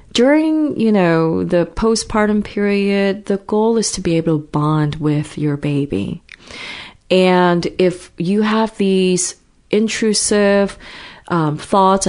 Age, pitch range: 30-49, 160-205 Hz